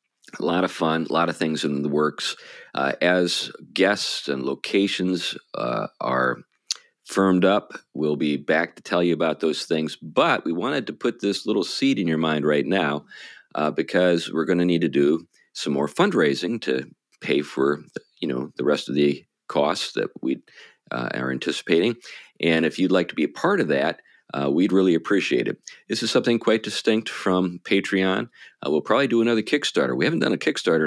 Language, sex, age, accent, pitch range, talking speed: English, male, 40-59, American, 75-100 Hz, 195 wpm